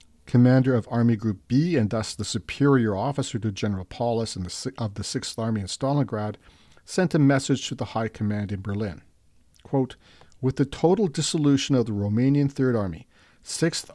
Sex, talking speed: male, 175 wpm